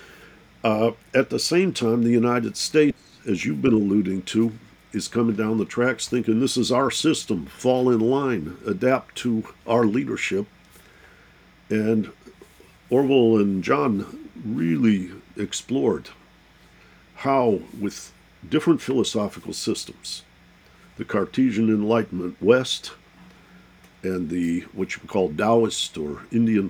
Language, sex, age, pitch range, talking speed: English, male, 50-69, 100-125 Hz, 120 wpm